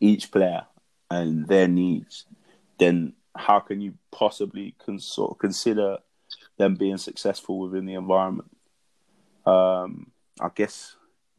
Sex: male